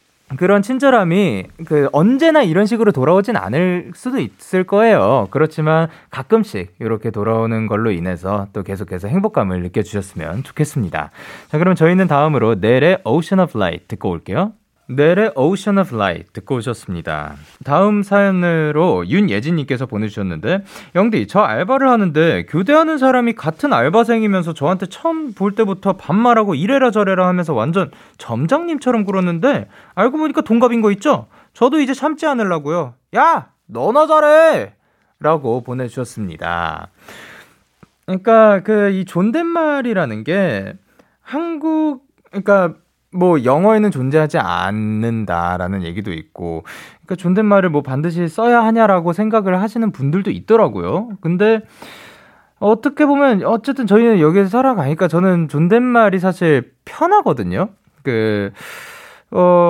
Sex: male